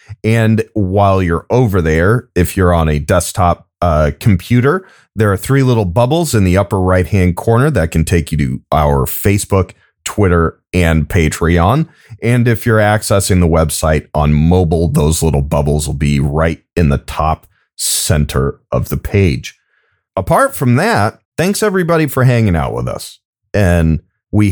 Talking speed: 160 wpm